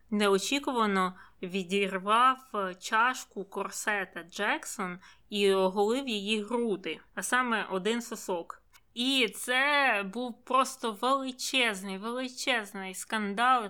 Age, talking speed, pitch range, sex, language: 20-39, 90 wpm, 195-235 Hz, female, Ukrainian